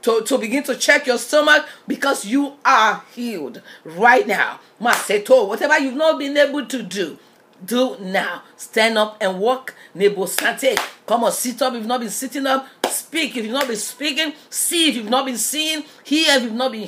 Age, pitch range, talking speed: 40-59, 205-265 Hz, 190 wpm